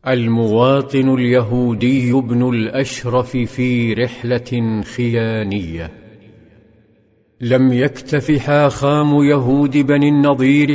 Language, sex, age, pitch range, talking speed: Arabic, male, 50-69, 130-145 Hz, 75 wpm